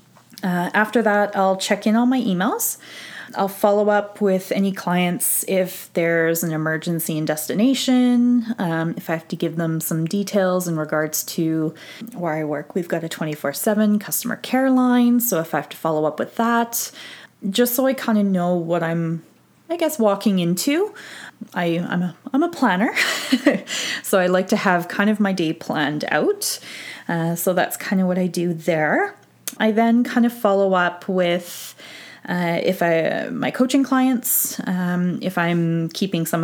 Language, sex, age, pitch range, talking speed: English, female, 20-39, 175-240 Hz, 175 wpm